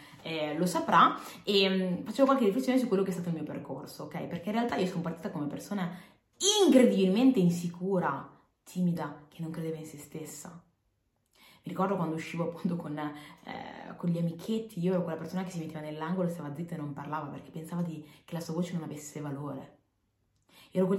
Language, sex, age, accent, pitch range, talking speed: Italian, female, 20-39, native, 160-200 Hz, 195 wpm